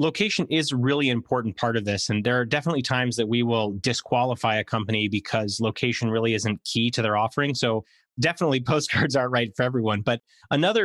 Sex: male